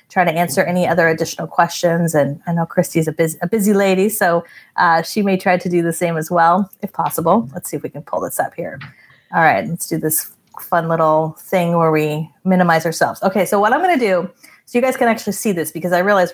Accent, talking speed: American, 245 wpm